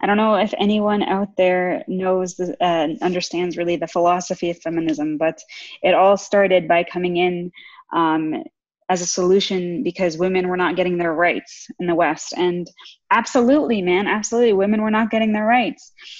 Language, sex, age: English, female, 20-39